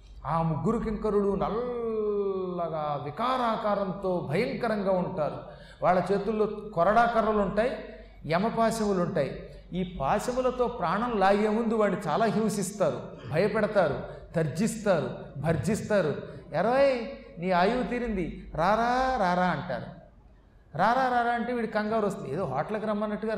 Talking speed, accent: 100 wpm, native